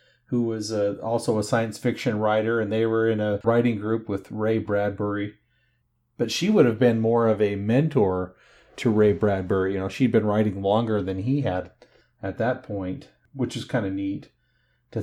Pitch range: 105-120 Hz